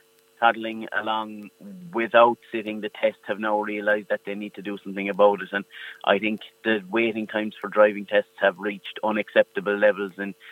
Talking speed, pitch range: 175 wpm, 105-115 Hz